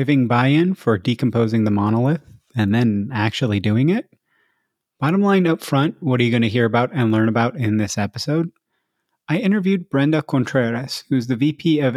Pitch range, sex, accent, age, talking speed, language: 115-140 Hz, male, American, 30-49, 180 wpm, English